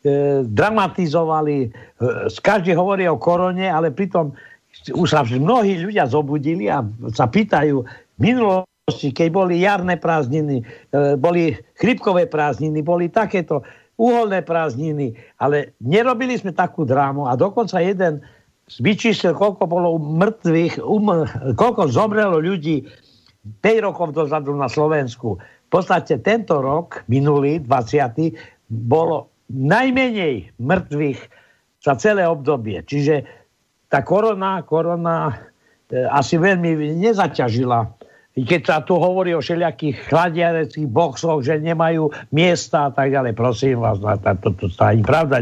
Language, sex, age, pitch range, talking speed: Slovak, male, 60-79, 140-180 Hz, 115 wpm